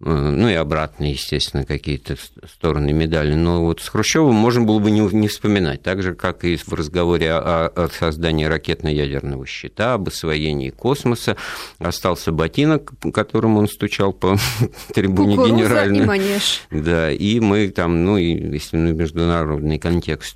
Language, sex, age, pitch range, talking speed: Russian, male, 50-69, 80-105 Hz, 135 wpm